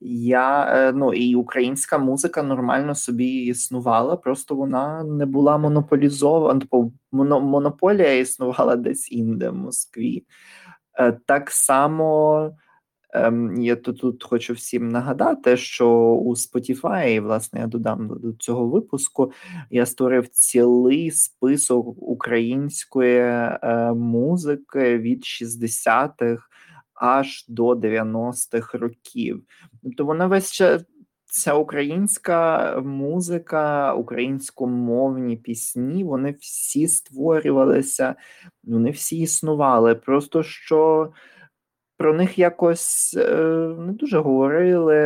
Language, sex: Ukrainian, male